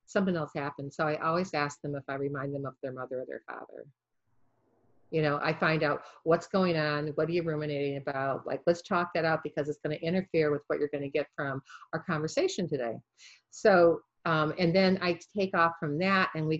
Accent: American